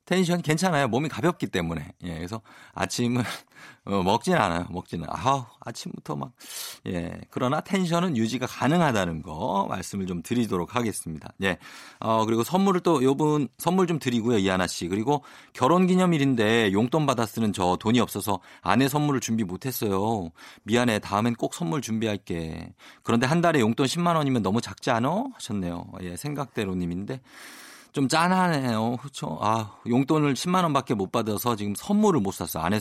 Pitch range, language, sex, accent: 95-150 Hz, Korean, male, native